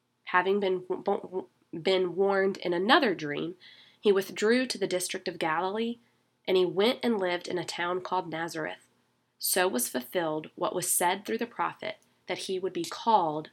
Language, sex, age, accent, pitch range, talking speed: English, female, 20-39, American, 170-235 Hz, 180 wpm